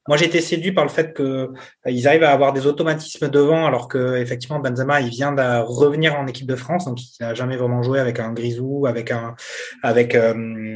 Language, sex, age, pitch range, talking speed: French, male, 20-39, 120-150 Hz, 210 wpm